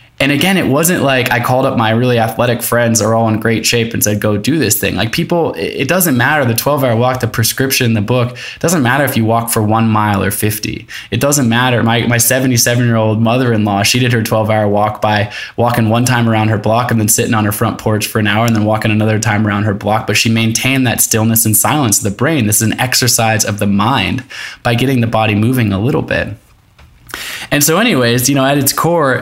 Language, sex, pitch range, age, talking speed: English, male, 110-120 Hz, 20-39, 245 wpm